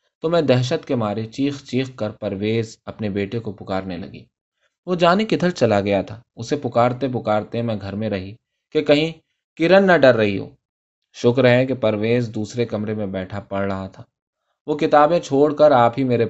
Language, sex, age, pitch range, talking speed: Urdu, male, 20-39, 105-140 Hz, 190 wpm